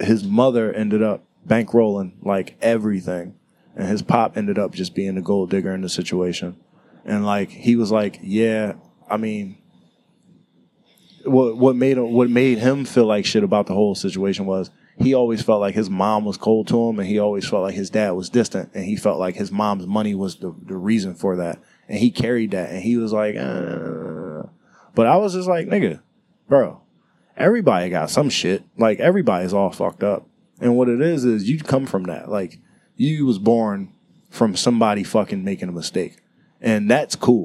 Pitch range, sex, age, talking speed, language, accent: 95-115 Hz, male, 20-39, 190 wpm, English, American